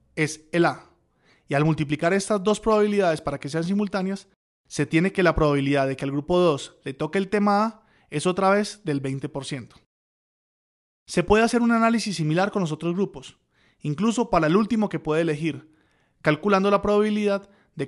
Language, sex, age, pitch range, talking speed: Spanish, male, 30-49, 150-195 Hz, 180 wpm